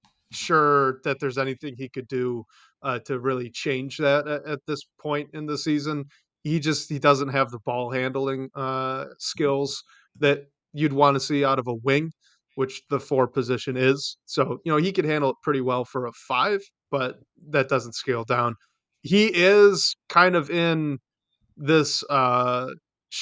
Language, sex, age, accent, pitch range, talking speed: English, male, 30-49, American, 125-150 Hz, 175 wpm